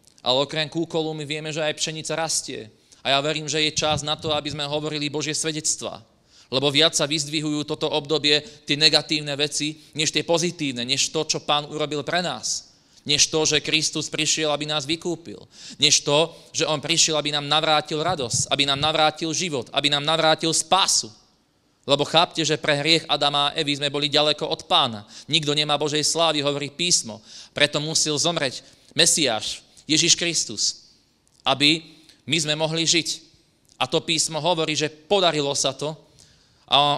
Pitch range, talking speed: 140-155 Hz, 170 wpm